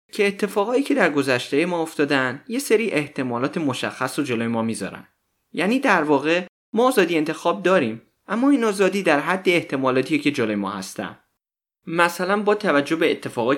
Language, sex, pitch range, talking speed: Persian, male, 130-180 Hz, 165 wpm